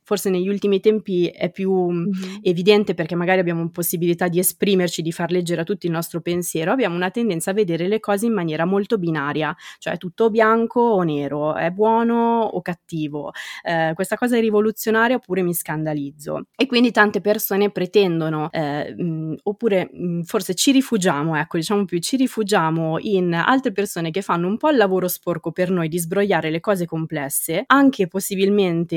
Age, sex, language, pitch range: 20-39, female, Italian, 165-205 Hz